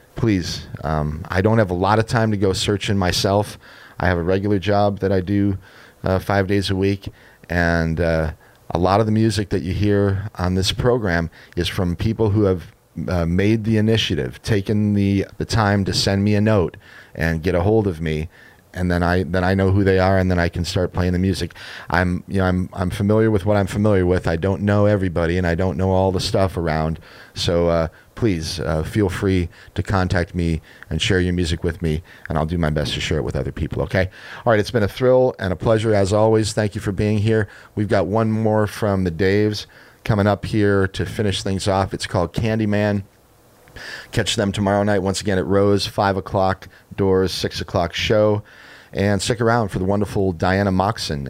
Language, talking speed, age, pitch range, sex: English, 215 wpm, 30-49, 90-105 Hz, male